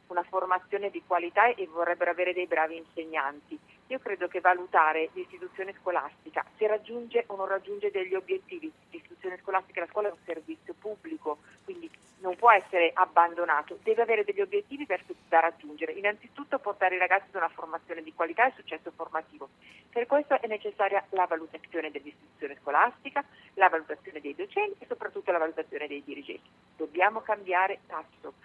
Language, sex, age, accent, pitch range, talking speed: Italian, female, 40-59, native, 175-245 Hz, 160 wpm